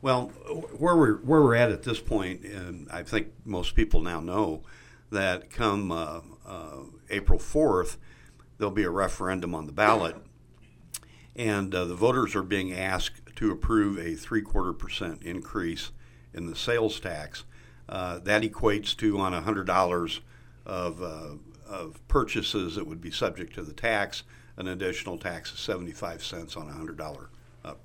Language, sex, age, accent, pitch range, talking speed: English, male, 60-79, American, 90-110 Hz, 150 wpm